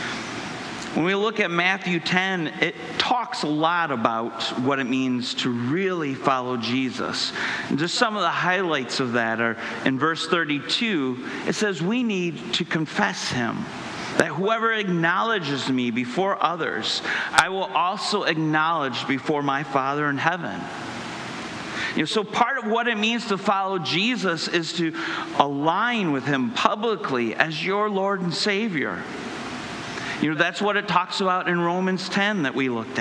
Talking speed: 155 wpm